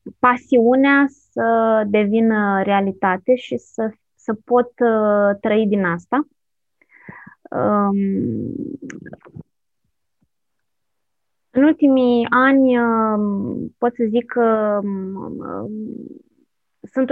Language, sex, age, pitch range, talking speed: Romanian, female, 20-39, 195-245 Hz, 65 wpm